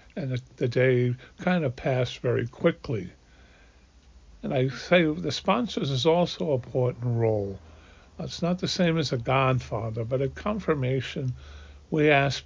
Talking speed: 145 wpm